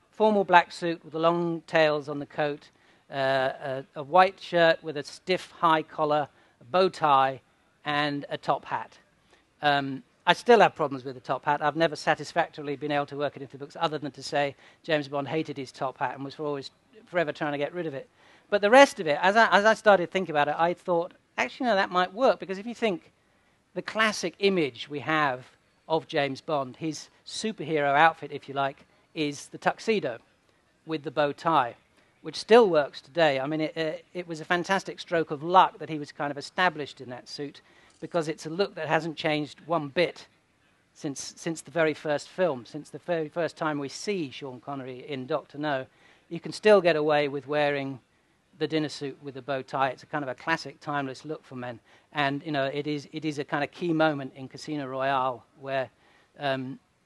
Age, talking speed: 40-59, 215 wpm